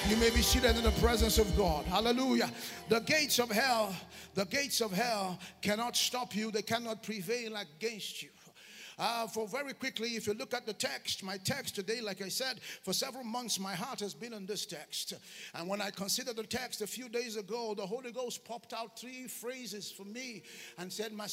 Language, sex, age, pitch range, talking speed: English, male, 50-69, 200-240 Hz, 210 wpm